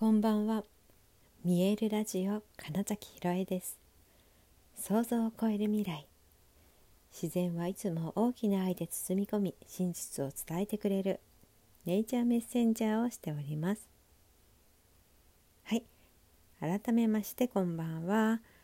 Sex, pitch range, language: female, 150-215 Hz, Japanese